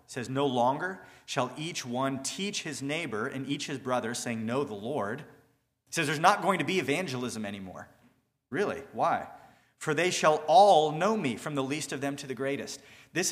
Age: 40-59